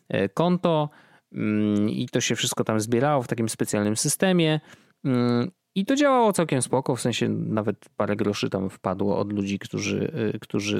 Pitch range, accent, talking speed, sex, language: 115-155 Hz, native, 150 wpm, male, Polish